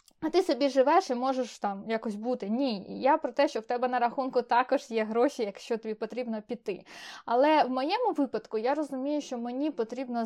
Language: Ukrainian